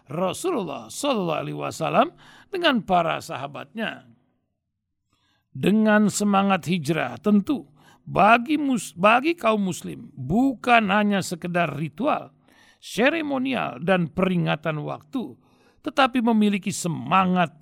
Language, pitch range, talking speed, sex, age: Indonesian, 155-230 Hz, 90 wpm, male, 60-79